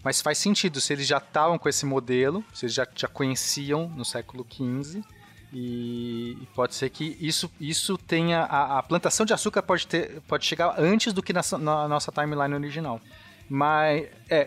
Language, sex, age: Portuguese, male, 30-49